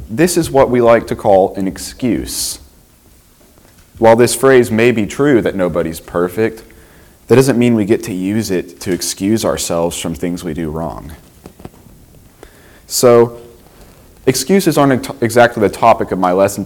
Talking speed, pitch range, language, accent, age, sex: 155 wpm, 90-120 Hz, English, American, 30-49, male